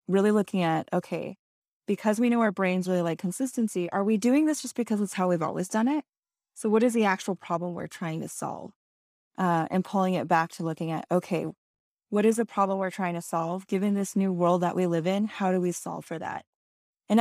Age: 10-29